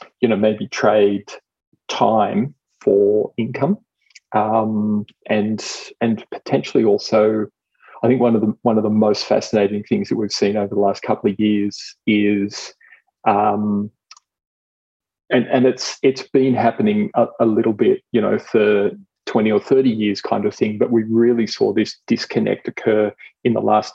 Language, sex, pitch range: English, male, 105-120 Hz